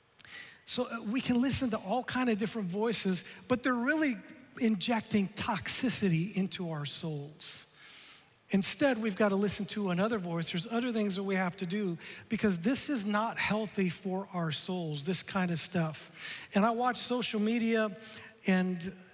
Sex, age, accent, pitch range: male, 40-59, American, 175-220 Hz